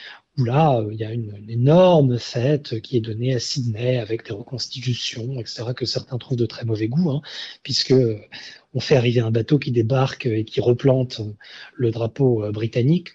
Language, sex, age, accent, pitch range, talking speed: French, male, 40-59, French, 120-150 Hz, 185 wpm